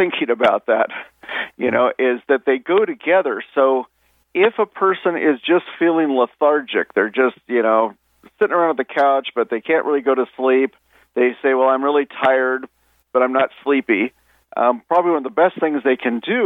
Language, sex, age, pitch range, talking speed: English, male, 50-69, 135-175 Hz, 195 wpm